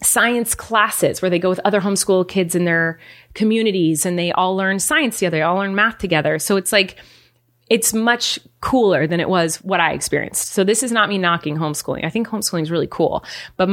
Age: 30-49